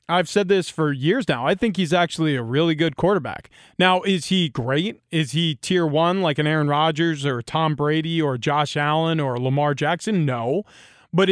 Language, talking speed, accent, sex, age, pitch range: English, 195 wpm, American, male, 20-39, 155-205 Hz